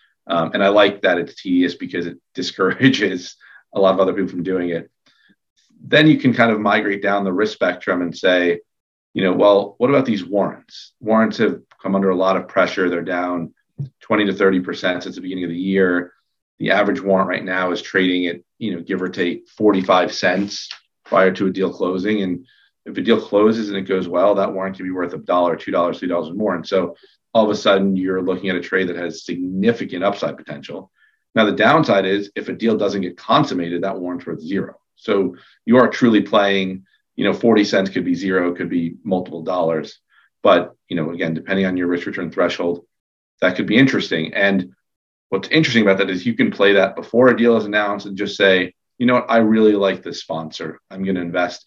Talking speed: 215 wpm